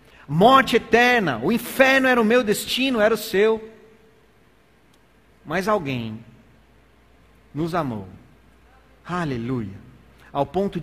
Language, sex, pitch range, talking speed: Portuguese, male, 135-200 Hz, 100 wpm